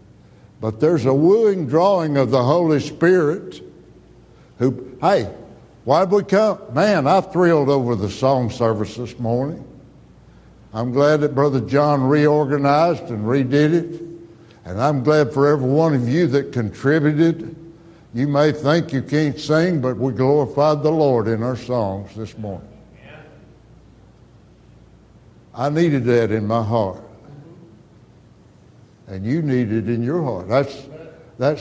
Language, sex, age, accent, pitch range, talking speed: English, male, 60-79, American, 120-165 Hz, 140 wpm